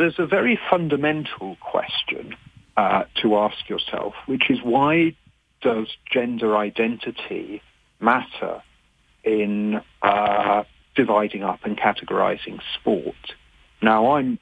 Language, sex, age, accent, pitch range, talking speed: English, male, 50-69, British, 105-140 Hz, 105 wpm